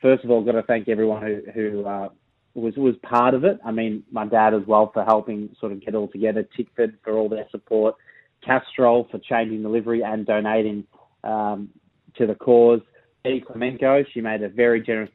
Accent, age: Australian, 20-39